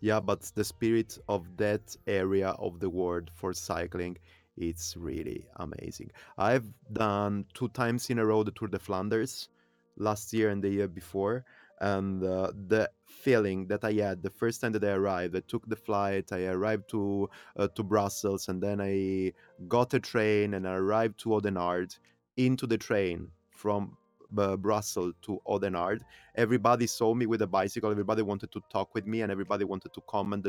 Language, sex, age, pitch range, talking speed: English, male, 30-49, 95-115 Hz, 180 wpm